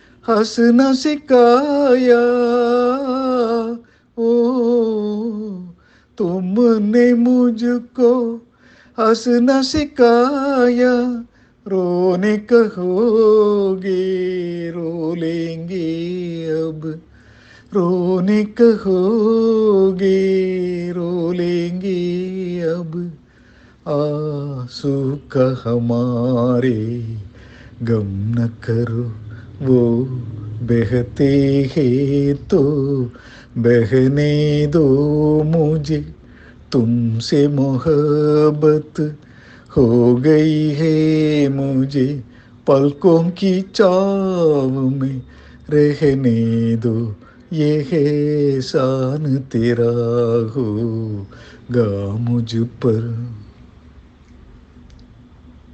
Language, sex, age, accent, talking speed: Tamil, male, 50-69, native, 30 wpm